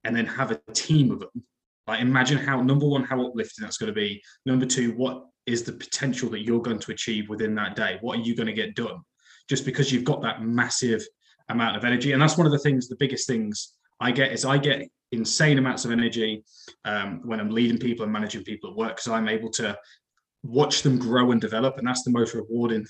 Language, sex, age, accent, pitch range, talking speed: English, male, 20-39, British, 115-135 Hz, 235 wpm